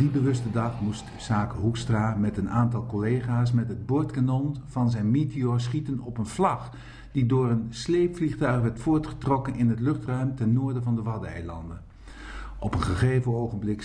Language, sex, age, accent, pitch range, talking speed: Dutch, male, 50-69, Dutch, 105-130 Hz, 165 wpm